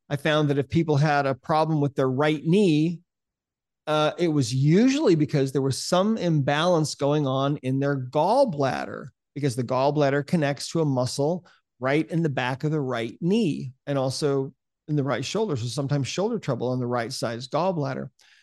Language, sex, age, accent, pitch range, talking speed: English, male, 40-59, American, 135-160 Hz, 180 wpm